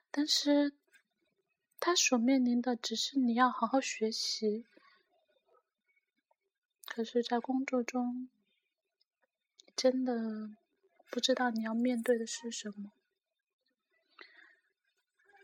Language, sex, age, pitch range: Chinese, female, 30-49, 230-285 Hz